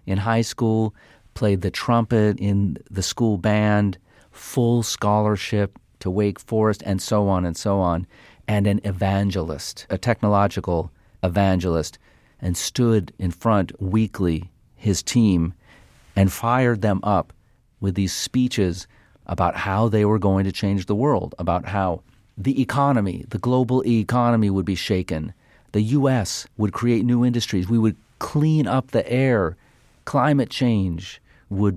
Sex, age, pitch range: male, 40-59, 95-115 Hz